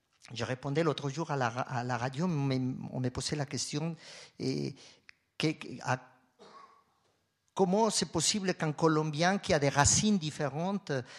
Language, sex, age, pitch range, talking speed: French, male, 50-69, 130-160 Hz, 150 wpm